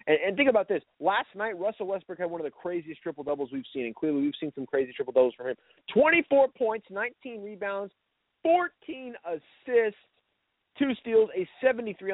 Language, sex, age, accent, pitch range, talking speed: English, male, 30-49, American, 135-195 Hz, 185 wpm